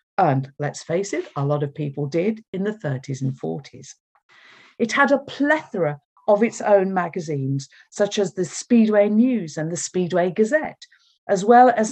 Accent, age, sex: British, 50-69, female